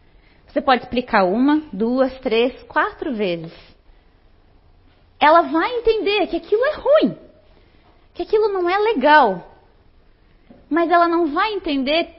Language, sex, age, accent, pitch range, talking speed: Portuguese, female, 20-39, Brazilian, 215-335 Hz, 125 wpm